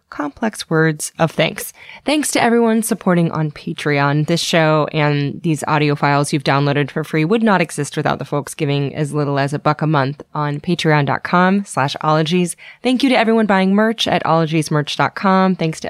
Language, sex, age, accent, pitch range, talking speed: English, female, 20-39, American, 145-180 Hz, 180 wpm